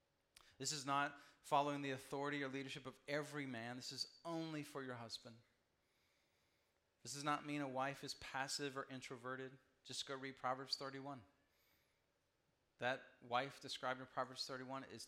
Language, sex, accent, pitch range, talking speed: English, male, American, 125-150 Hz, 155 wpm